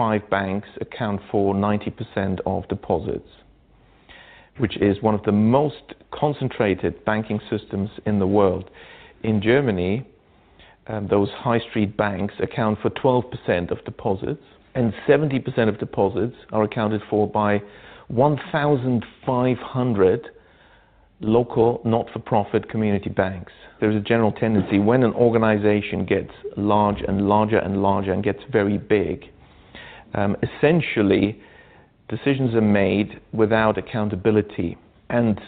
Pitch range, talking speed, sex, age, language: 100-115 Hz, 115 wpm, male, 40-59, English